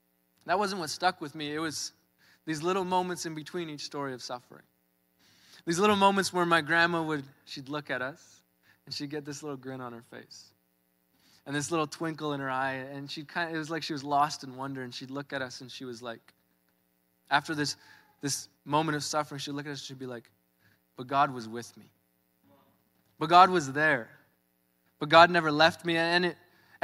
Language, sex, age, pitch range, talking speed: English, male, 20-39, 125-170 Hz, 210 wpm